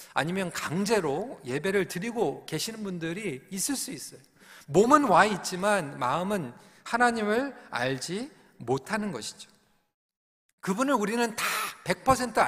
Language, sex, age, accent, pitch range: Korean, male, 40-59, native, 175-235 Hz